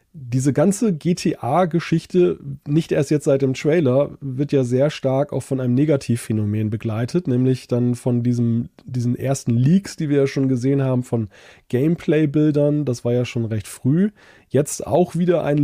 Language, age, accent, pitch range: German, 20-39, German, 125-155 Hz